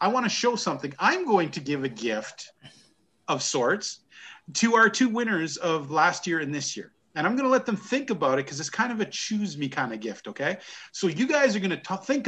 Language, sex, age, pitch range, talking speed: English, male, 40-59, 165-215 Hz, 250 wpm